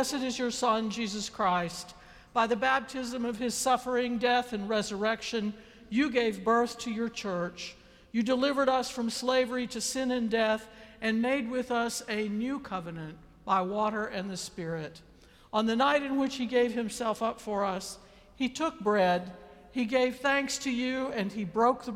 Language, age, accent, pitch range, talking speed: English, 60-79, American, 200-250 Hz, 180 wpm